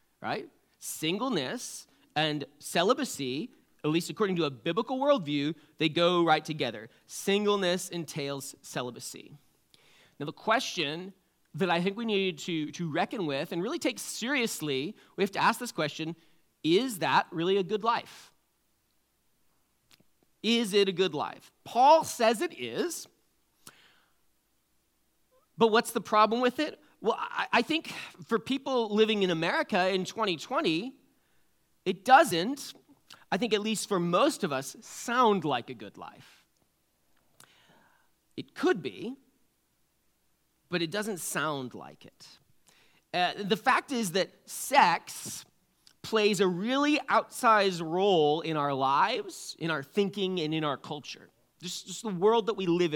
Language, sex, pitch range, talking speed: English, male, 165-230 Hz, 140 wpm